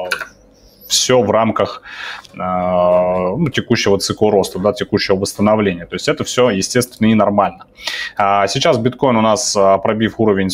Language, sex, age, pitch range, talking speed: Russian, male, 20-39, 95-125 Hz, 140 wpm